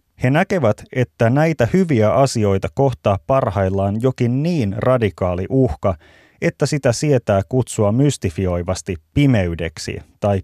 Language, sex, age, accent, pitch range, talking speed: Finnish, male, 30-49, native, 95-135 Hz, 110 wpm